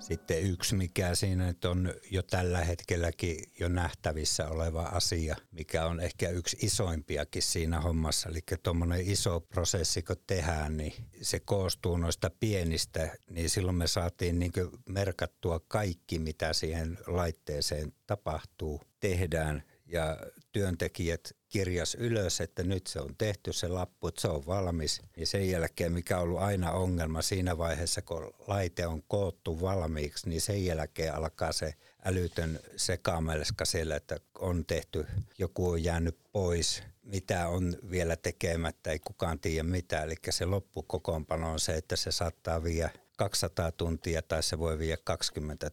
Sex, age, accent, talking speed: male, 60-79, native, 145 wpm